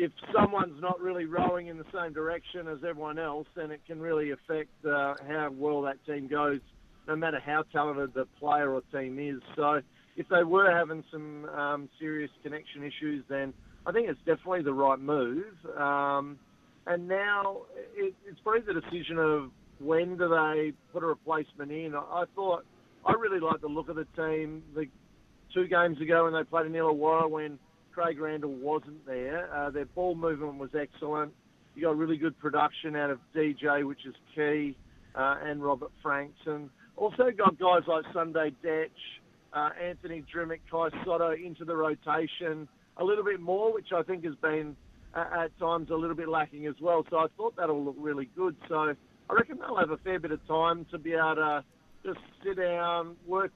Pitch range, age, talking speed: 150-170 Hz, 50-69, 190 wpm